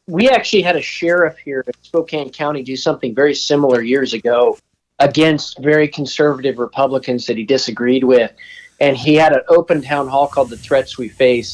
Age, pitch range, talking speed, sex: 40-59, 130-170 Hz, 180 wpm, male